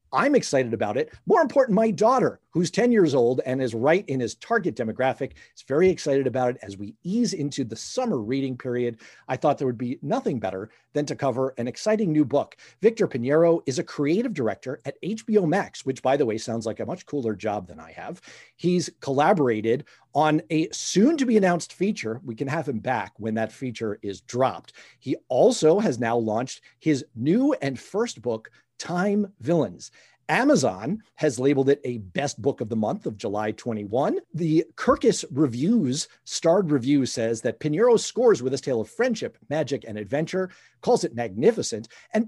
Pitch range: 125-200 Hz